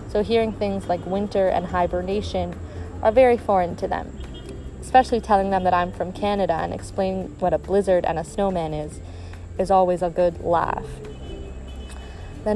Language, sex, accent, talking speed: English, female, American, 160 wpm